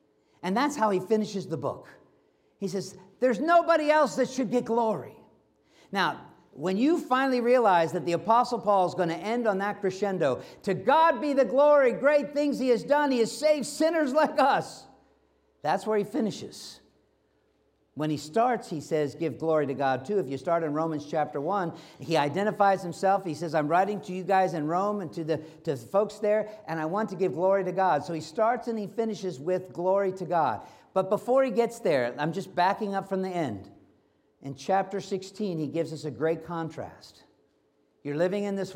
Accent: American